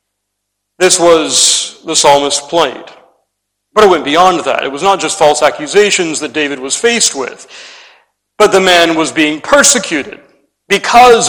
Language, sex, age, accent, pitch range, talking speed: English, male, 40-59, American, 145-180 Hz, 150 wpm